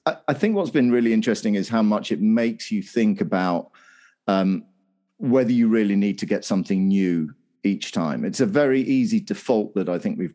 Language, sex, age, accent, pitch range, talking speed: English, male, 40-59, British, 95-120 Hz, 195 wpm